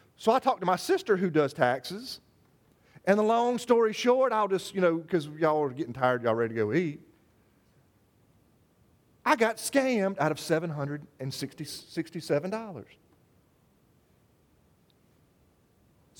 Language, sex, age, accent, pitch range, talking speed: English, male, 40-59, American, 165-250 Hz, 125 wpm